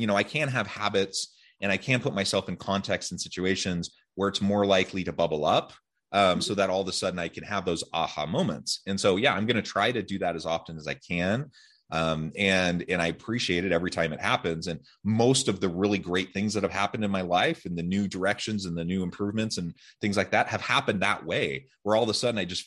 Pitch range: 90-115 Hz